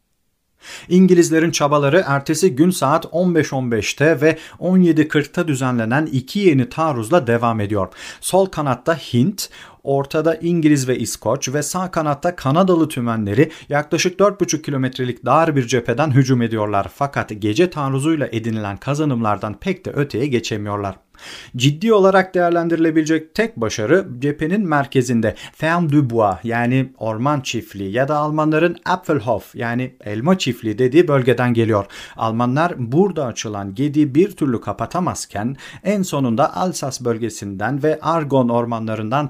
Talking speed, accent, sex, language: 120 wpm, native, male, Turkish